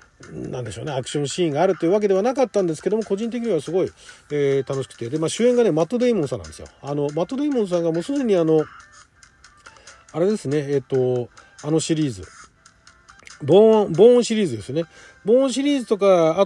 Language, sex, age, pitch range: Japanese, male, 40-59, 150-225 Hz